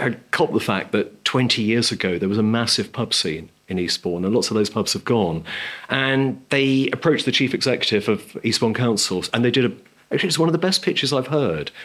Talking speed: 225 wpm